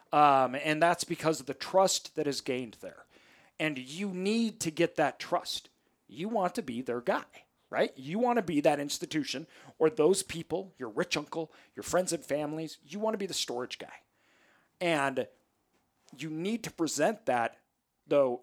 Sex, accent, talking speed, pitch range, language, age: male, American, 180 wpm, 135-185 Hz, English, 40-59